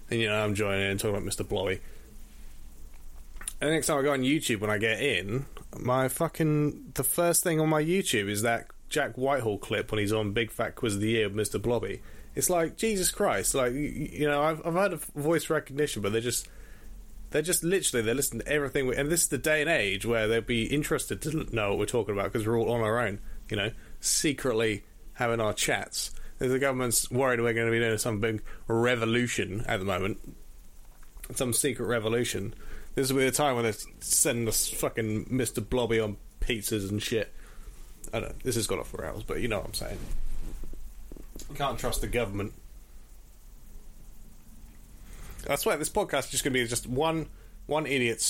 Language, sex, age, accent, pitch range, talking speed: English, male, 20-39, British, 105-140 Hz, 205 wpm